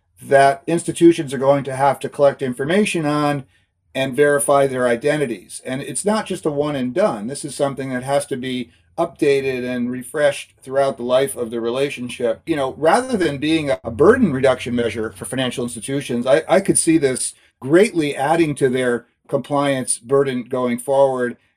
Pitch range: 125-145 Hz